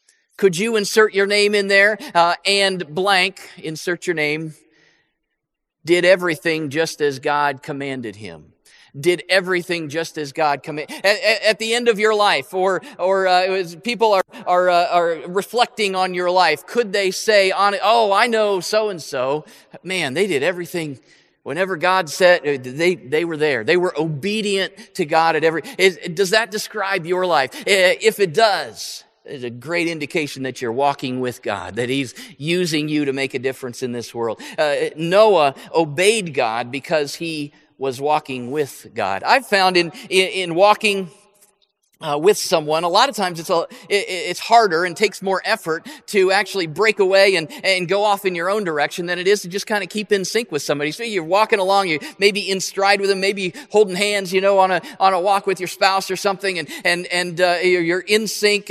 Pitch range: 165-205 Hz